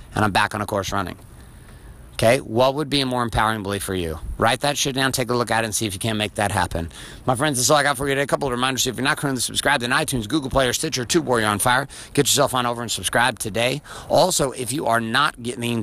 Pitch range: 105-135 Hz